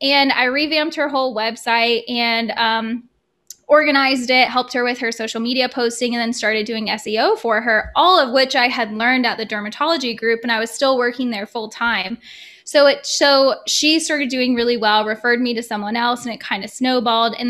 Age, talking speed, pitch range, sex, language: 10-29, 205 wpm, 225-270 Hz, female, English